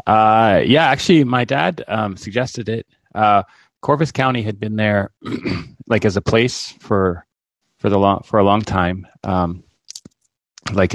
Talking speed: 155 wpm